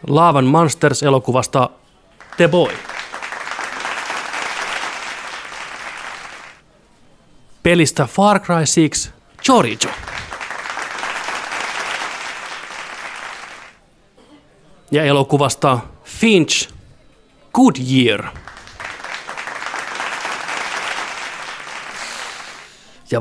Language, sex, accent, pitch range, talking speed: Finnish, male, native, 110-165 Hz, 40 wpm